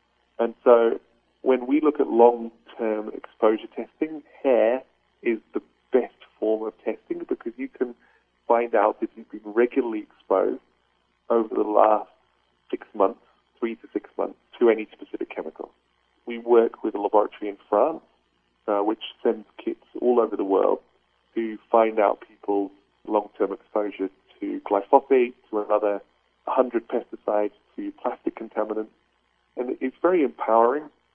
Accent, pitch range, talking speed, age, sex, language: British, 95-130 Hz, 140 wpm, 40-59, male, English